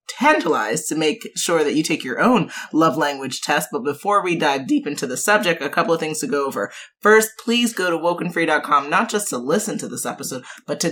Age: 30-49